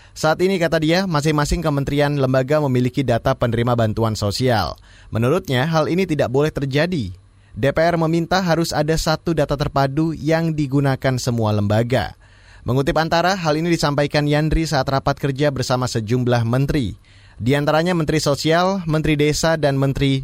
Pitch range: 120-155 Hz